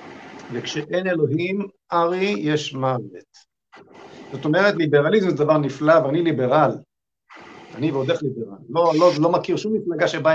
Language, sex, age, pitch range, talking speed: Hebrew, male, 50-69, 140-175 Hz, 140 wpm